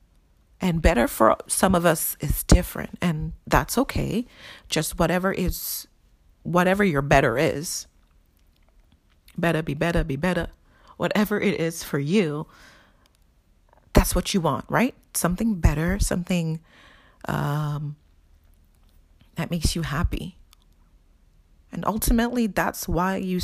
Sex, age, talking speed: female, 40-59, 120 wpm